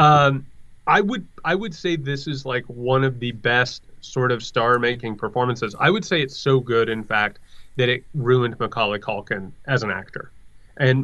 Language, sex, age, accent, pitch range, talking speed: English, male, 30-49, American, 115-145 Hz, 185 wpm